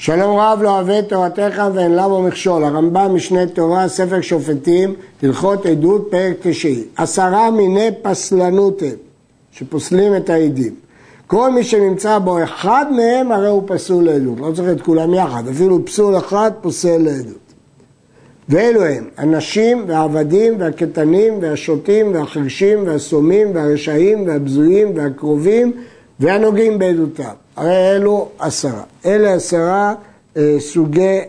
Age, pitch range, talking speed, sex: 60-79, 160-205 Hz, 120 wpm, male